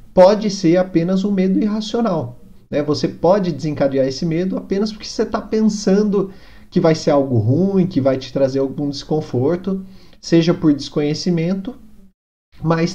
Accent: Brazilian